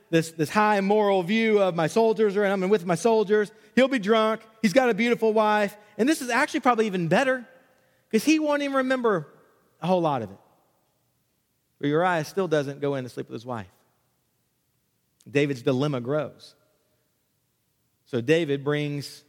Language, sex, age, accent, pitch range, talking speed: English, male, 40-59, American, 150-215 Hz, 170 wpm